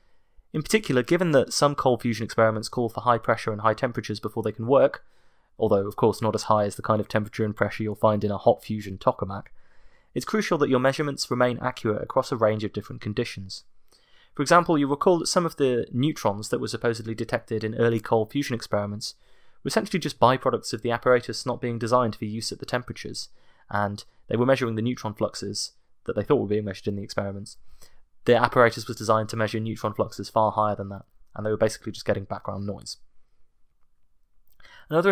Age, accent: 20-39, British